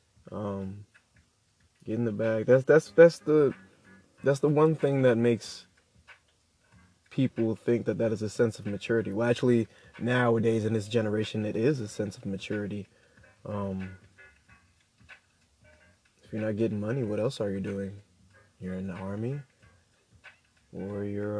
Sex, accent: male, American